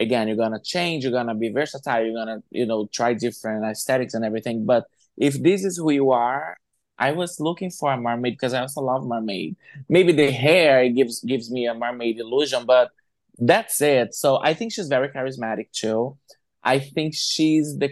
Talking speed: 195 wpm